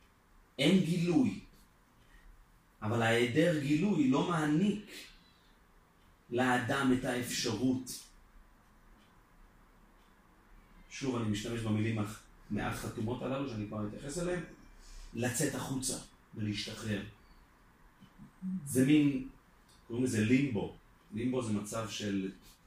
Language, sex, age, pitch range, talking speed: Hebrew, male, 40-59, 105-135 Hz, 85 wpm